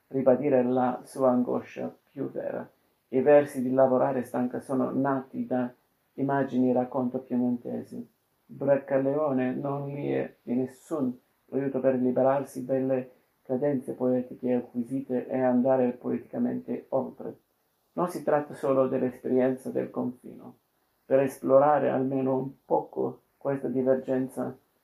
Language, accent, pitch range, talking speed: Italian, native, 125-135 Hz, 120 wpm